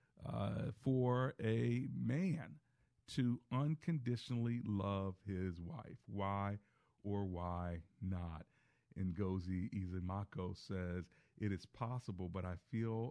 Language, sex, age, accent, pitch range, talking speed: English, male, 40-59, American, 95-125 Hz, 100 wpm